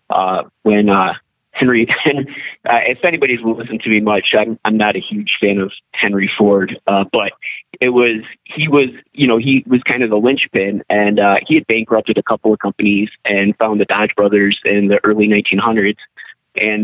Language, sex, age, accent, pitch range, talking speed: English, male, 20-39, American, 105-130 Hz, 190 wpm